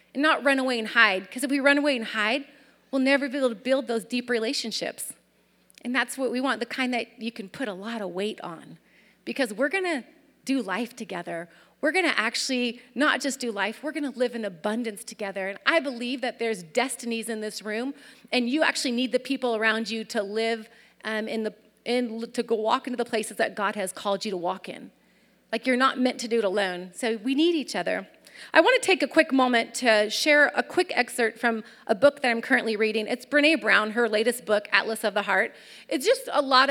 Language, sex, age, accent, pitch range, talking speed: English, female, 30-49, American, 220-270 Hz, 235 wpm